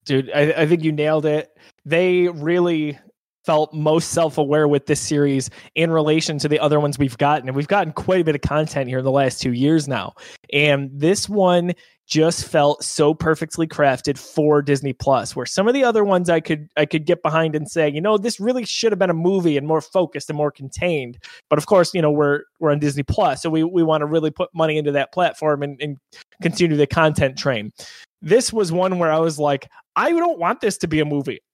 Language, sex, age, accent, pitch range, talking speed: English, male, 20-39, American, 150-185 Hz, 230 wpm